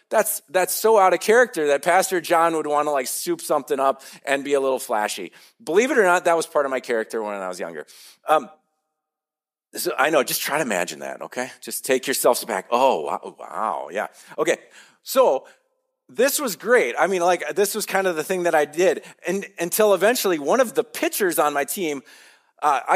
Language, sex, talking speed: English, male, 210 wpm